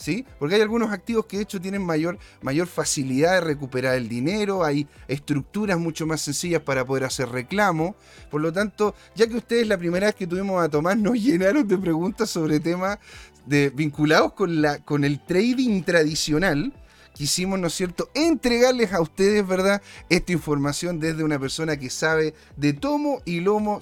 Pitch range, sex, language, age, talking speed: 155-220 Hz, male, Spanish, 40-59, 180 wpm